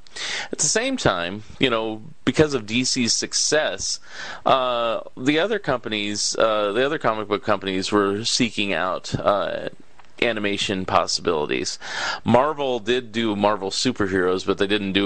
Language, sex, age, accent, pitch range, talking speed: English, male, 30-49, American, 95-125 Hz, 135 wpm